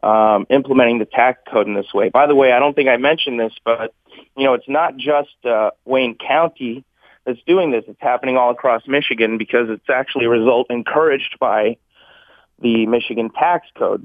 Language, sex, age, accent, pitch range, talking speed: English, male, 30-49, American, 110-130 Hz, 190 wpm